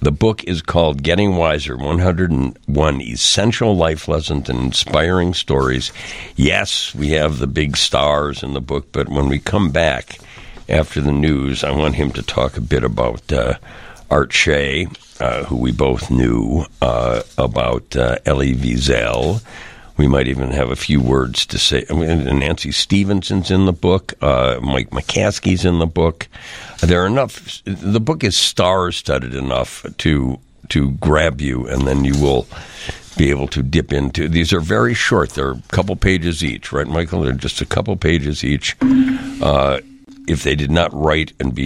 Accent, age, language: American, 60-79, English